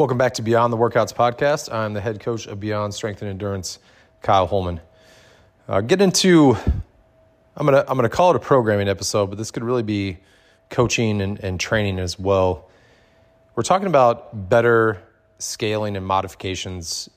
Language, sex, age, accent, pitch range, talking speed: English, male, 30-49, American, 95-110 Hz, 175 wpm